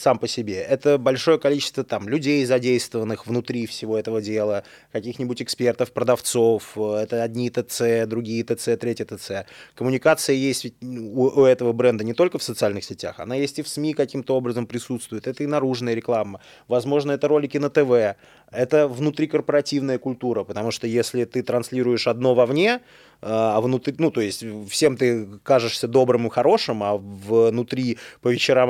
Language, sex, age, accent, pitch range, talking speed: Russian, male, 20-39, native, 120-140 Hz, 160 wpm